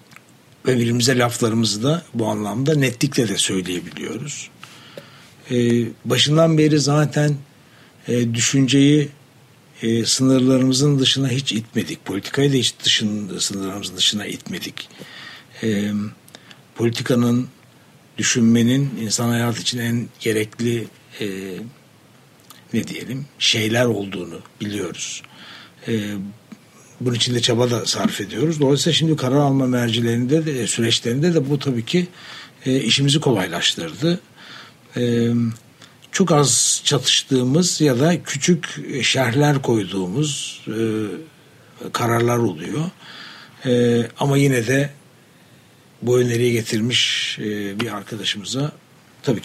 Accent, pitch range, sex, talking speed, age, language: native, 115-140 Hz, male, 100 wpm, 60-79, Turkish